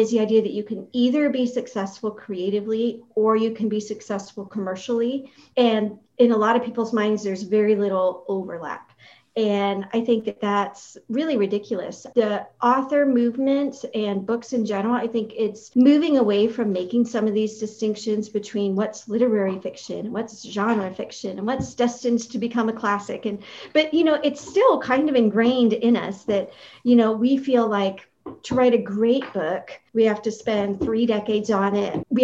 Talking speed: 180 wpm